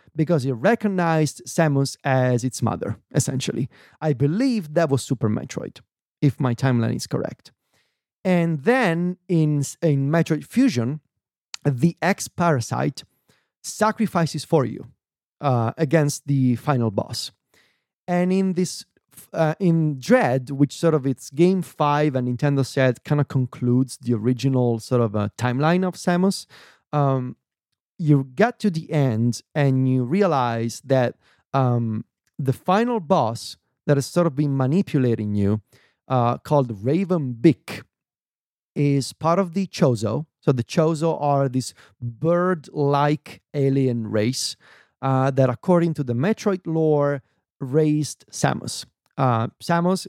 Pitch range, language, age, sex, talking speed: 130-170 Hz, English, 30-49, male, 130 wpm